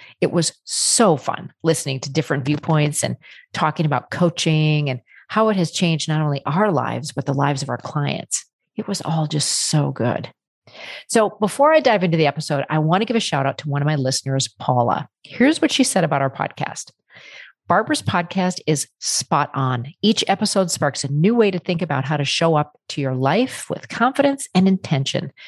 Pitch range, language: 145-215 Hz, English